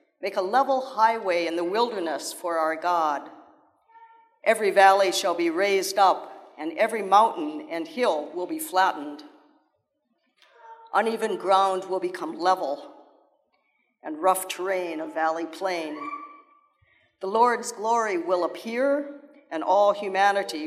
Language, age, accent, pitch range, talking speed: English, 50-69, American, 175-255 Hz, 125 wpm